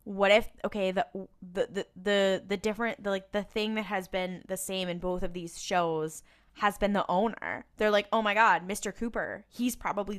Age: 10-29